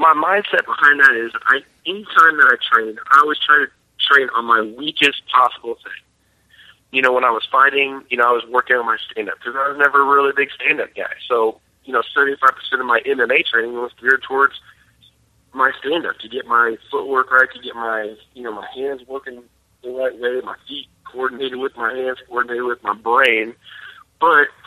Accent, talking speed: American, 200 wpm